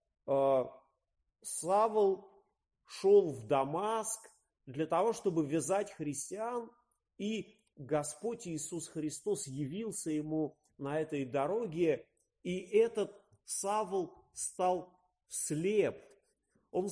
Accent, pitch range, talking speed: native, 150-215 Hz, 85 wpm